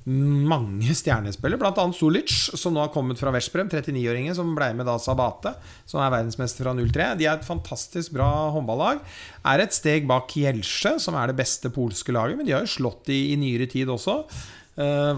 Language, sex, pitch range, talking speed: English, male, 115-145 Hz, 220 wpm